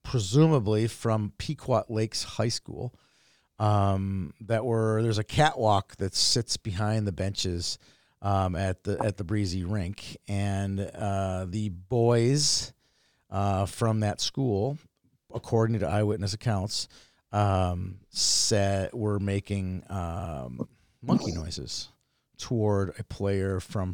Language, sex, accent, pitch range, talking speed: English, male, American, 95-110 Hz, 120 wpm